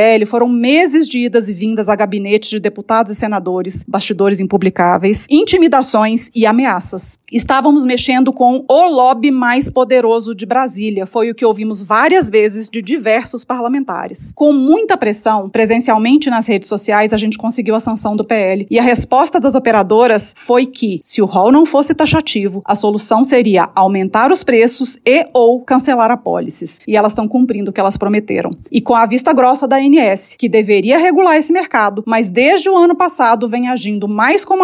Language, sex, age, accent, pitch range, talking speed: Portuguese, female, 30-49, Brazilian, 215-270 Hz, 175 wpm